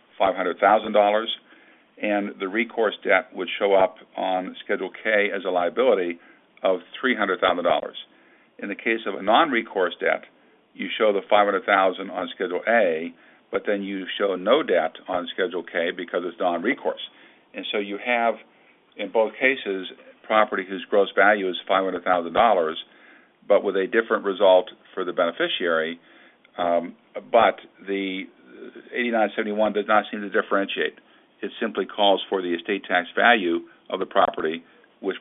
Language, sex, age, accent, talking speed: English, male, 50-69, American, 140 wpm